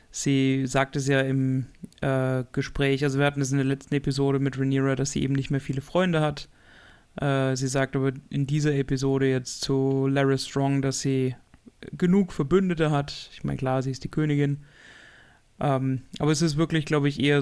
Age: 30-49